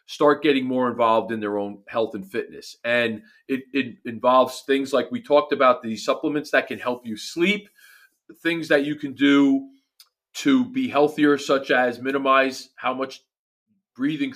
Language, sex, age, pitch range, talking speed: English, male, 40-59, 120-150 Hz, 165 wpm